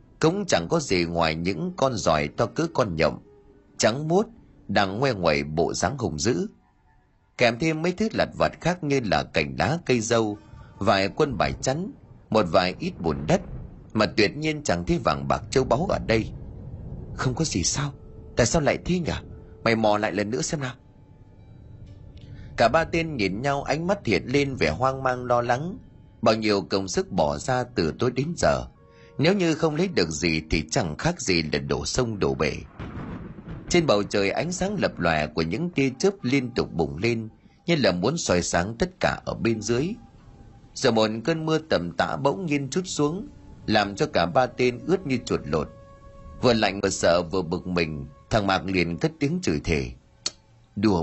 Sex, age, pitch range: male, 30-49, 100-150 Hz